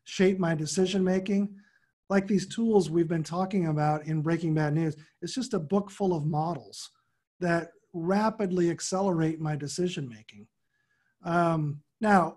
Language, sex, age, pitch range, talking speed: English, male, 40-59, 165-200 Hz, 130 wpm